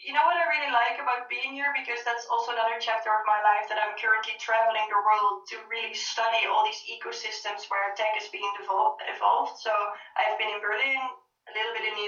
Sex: female